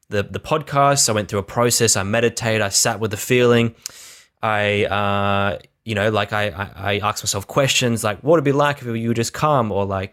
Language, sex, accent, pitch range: English, male, Australian, 100-125 Hz